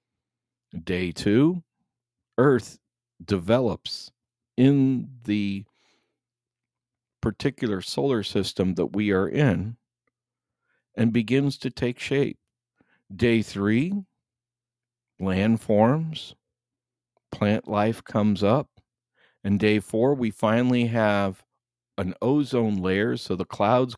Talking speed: 95 wpm